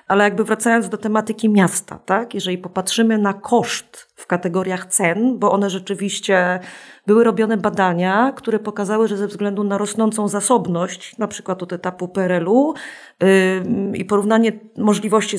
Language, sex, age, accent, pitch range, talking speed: Polish, female, 30-49, native, 185-225 Hz, 145 wpm